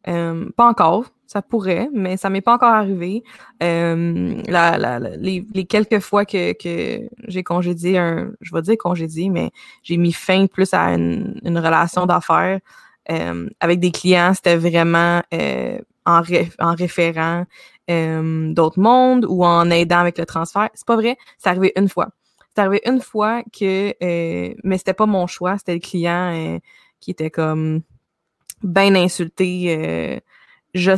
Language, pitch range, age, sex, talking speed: French, 170-215 Hz, 20-39, female, 170 wpm